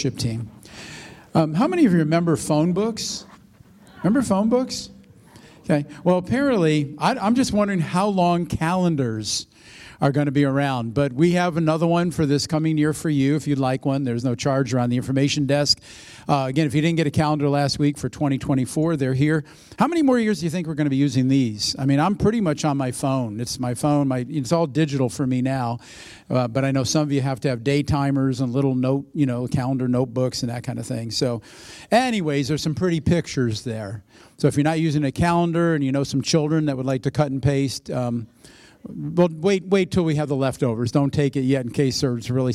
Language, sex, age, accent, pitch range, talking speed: English, male, 50-69, American, 130-160 Hz, 225 wpm